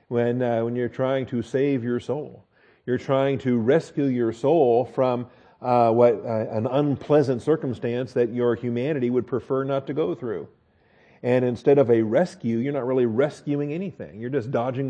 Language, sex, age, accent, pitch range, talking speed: English, male, 40-59, American, 120-150 Hz, 175 wpm